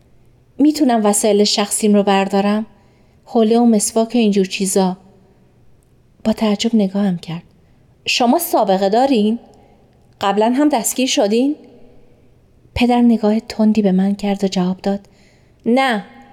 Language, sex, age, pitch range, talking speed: Persian, female, 30-49, 180-245 Hz, 115 wpm